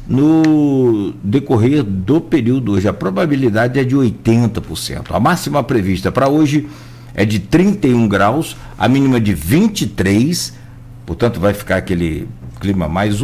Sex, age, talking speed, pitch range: male, 60-79, 130 wpm, 100-130 Hz